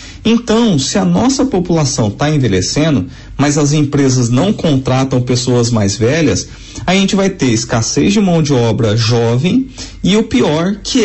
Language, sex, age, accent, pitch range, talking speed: Portuguese, male, 40-59, Brazilian, 135-200 Hz, 155 wpm